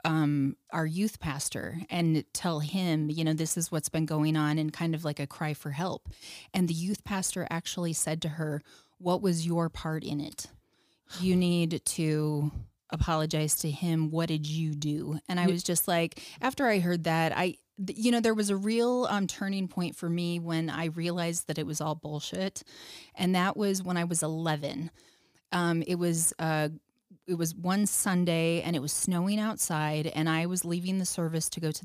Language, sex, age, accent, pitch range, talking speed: English, female, 30-49, American, 155-185 Hz, 200 wpm